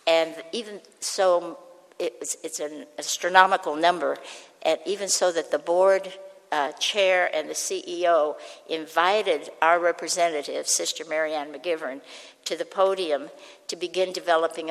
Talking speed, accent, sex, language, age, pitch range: 120 wpm, American, female, English, 60-79, 155-195 Hz